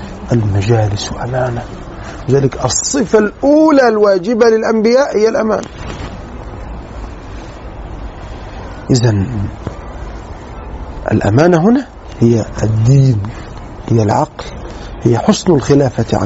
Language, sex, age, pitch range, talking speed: Arabic, male, 40-59, 110-165 Hz, 70 wpm